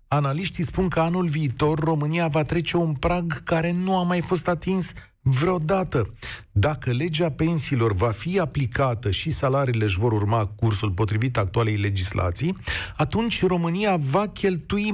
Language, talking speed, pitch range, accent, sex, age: Romanian, 145 wpm, 120-175 Hz, native, male, 40-59